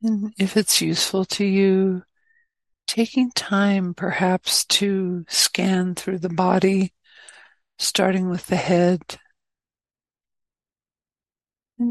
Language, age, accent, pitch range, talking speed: English, 60-79, American, 175-210 Hz, 95 wpm